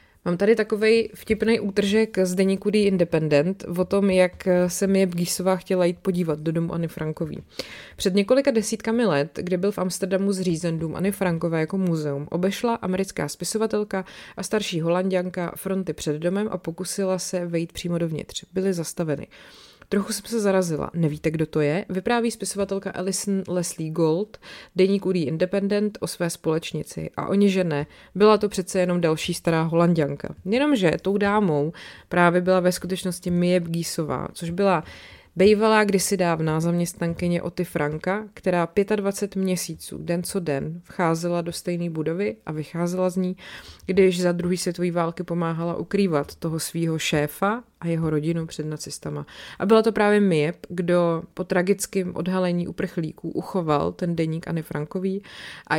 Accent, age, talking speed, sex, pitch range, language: native, 20-39, 155 wpm, female, 165-195 Hz, Czech